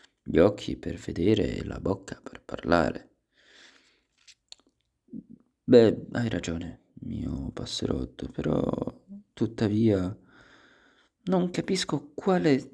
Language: Italian